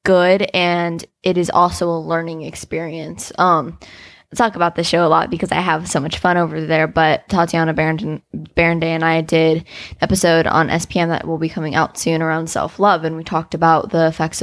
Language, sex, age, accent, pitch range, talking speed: English, female, 10-29, American, 160-180 Hz, 205 wpm